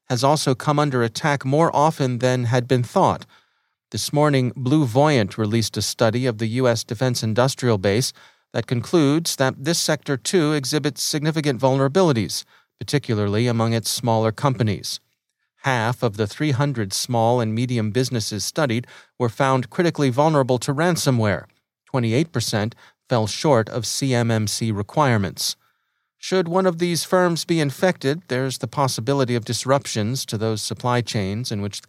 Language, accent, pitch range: English, American, 115-145 Hz